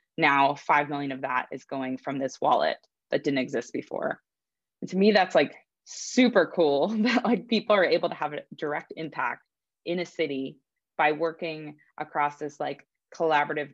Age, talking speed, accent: 20-39, 175 wpm, American